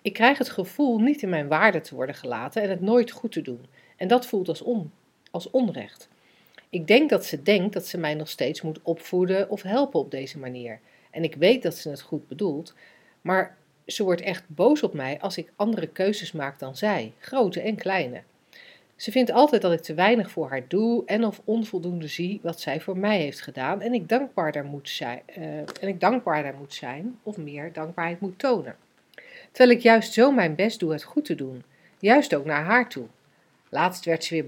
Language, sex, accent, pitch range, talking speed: Dutch, female, Dutch, 160-225 Hz, 210 wpm